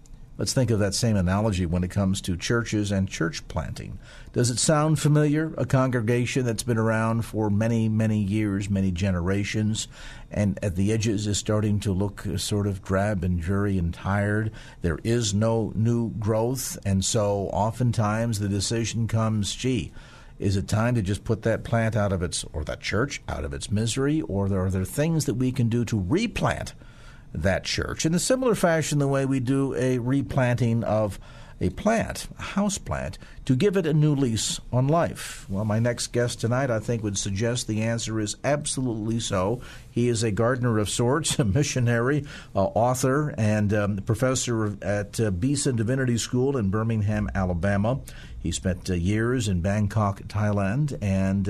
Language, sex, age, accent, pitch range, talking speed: English, male, 50-69, American, 100-125 Hz, 180 wpm